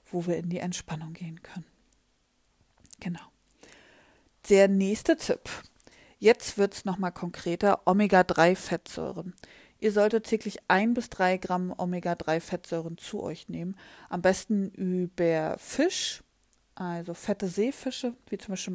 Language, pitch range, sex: German, 175-200 Hz, female